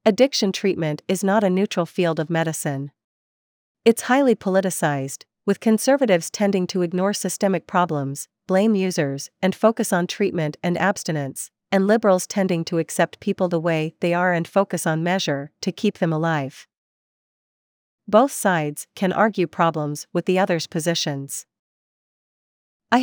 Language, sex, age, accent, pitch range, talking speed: English, female, 40-59, American, 160-200 Hz, 145 wpm